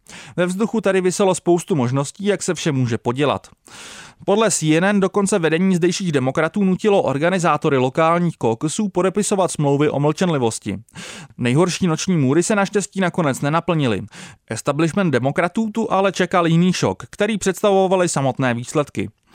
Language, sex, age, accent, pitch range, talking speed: Czech, male, 30-49, native, 140-185 Hz, 135 wpm